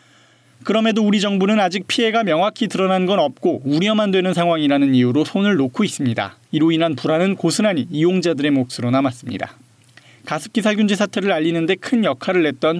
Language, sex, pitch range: Korean, male, 140-200 Hz